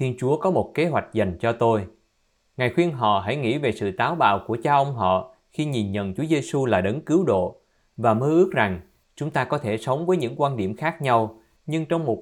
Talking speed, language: 240 wpm, Vietnamese